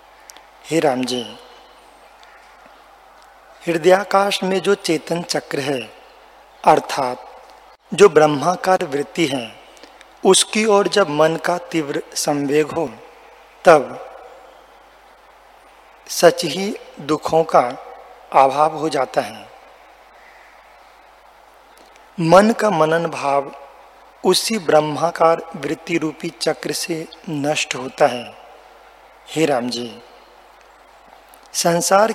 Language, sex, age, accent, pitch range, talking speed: Hindi, male, 40-59, native, 150-185 Hz, 90 wpm